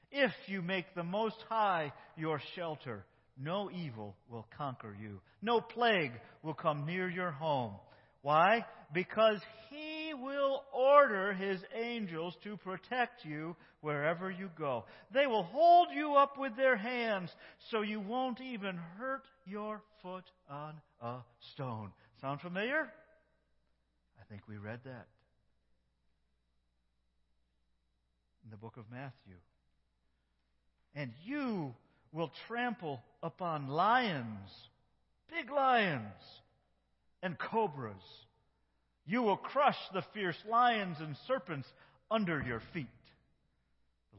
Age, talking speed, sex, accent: 50-69, 115 wpm, male, American